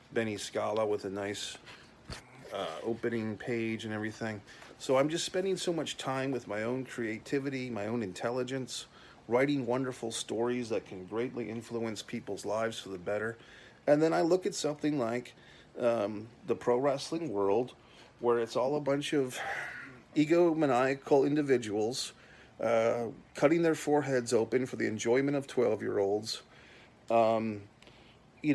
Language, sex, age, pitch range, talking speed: English, male, 30-49, 115-140 Hz, 145 wpm